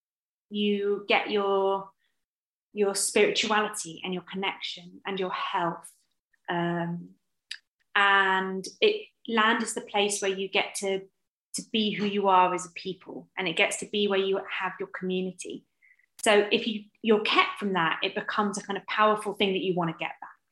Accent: British